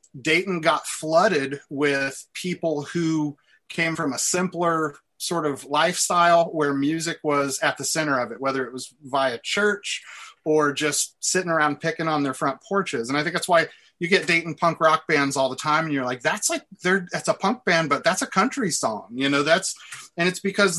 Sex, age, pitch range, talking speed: male, 30-49, 140-165 Hz, 200 wpm